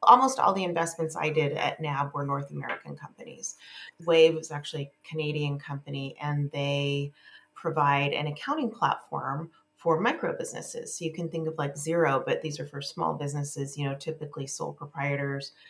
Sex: female